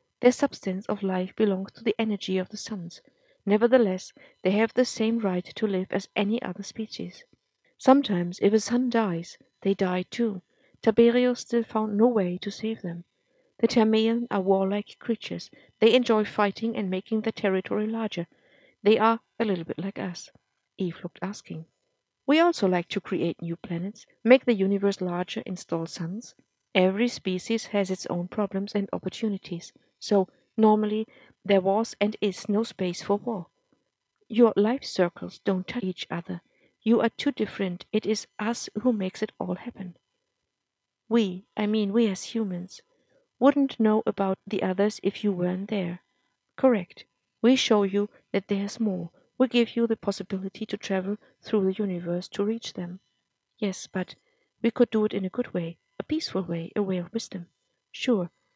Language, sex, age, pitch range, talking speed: English, female, 50-69, 185-230 Hz, 170 wpm